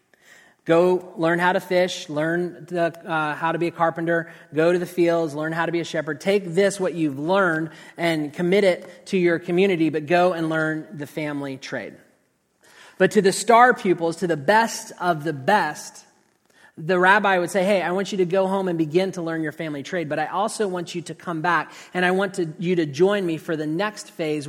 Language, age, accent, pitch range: English, 30-49, American, 155-180 Hz